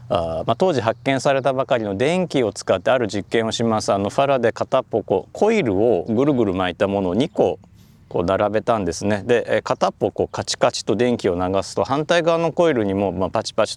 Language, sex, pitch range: Japanese, male, 100-135 Hz